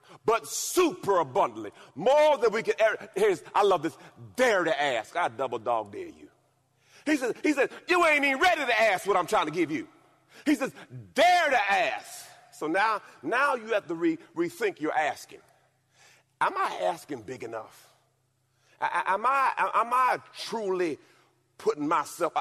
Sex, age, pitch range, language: male, 40-59, 255-370 Hz, English